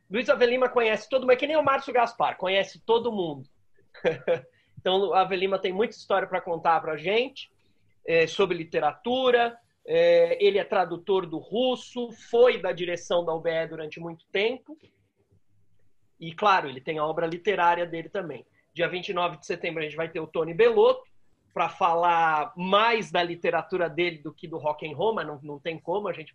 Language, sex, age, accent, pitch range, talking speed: Portuguese, male, 30-49, Brazilian, 145-230 Hz, 180 wpm